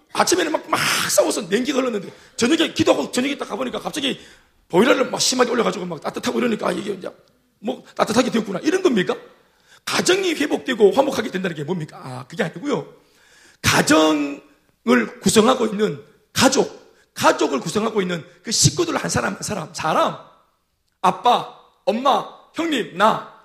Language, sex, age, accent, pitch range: Korean, male, 40-59, native, 205-320 Hz